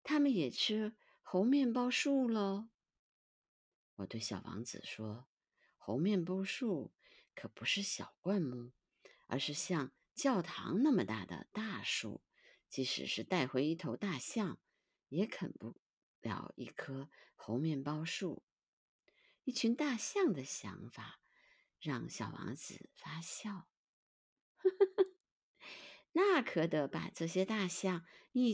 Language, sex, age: Chinese, female, 50-69